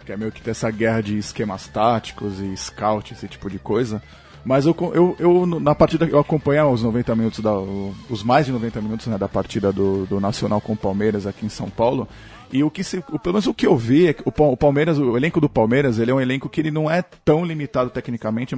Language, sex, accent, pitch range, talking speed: Portuguese, male, Brazilian, 115-150 Hz, 245 wpm